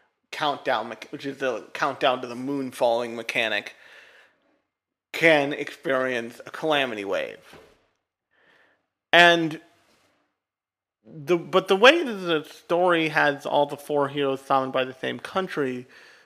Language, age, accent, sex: English, 40-59, American, male